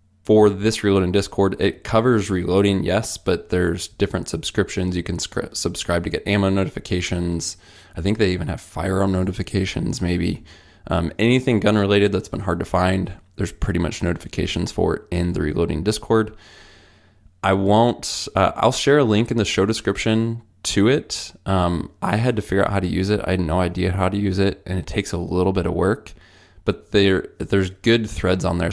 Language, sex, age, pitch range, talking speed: English, male, 20-39, 90-105 Hz, 190 wpm